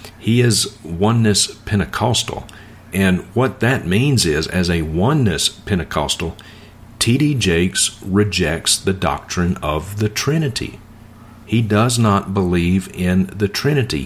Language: English